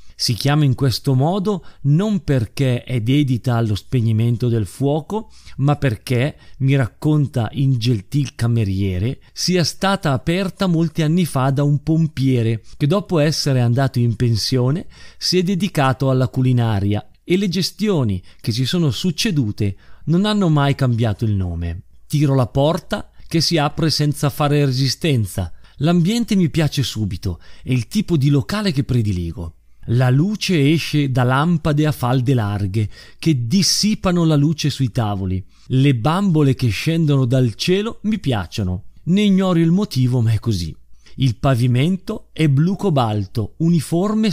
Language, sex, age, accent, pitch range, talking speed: Italian, male, 40-59, native, 120-165 Hz, 145 wpm